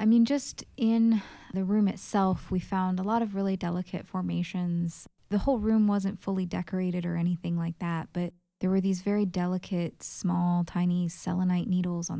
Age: 20-39